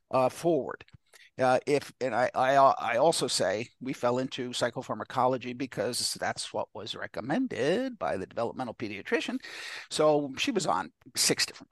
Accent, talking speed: American, 150 wpm